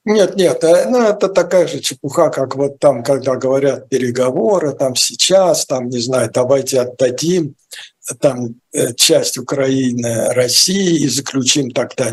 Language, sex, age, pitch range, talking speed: Russian, male, 60-79, 135-170 Hz, 130 wpm